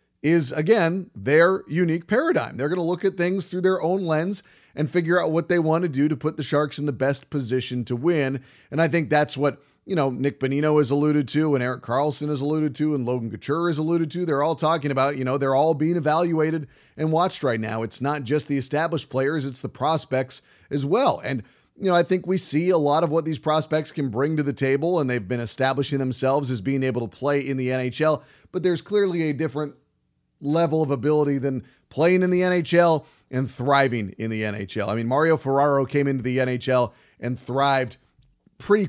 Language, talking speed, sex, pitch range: English, 220 wpm, male, 135-170 Hz